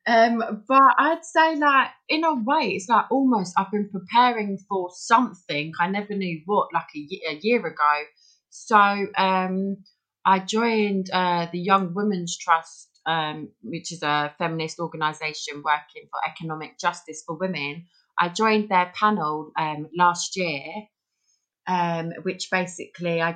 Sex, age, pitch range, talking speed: female, 30-49, 165-205 Hz, 145 wpm